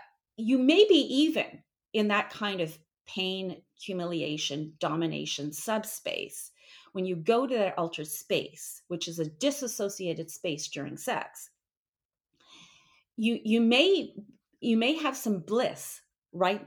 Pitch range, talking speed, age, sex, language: 190-260 Hz, 125 wpm, 40-59, female, English